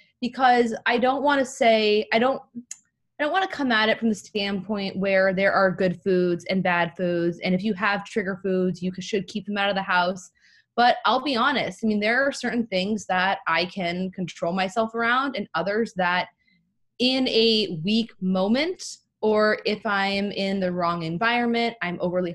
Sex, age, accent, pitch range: female, 20-39, American, 185-230 Hz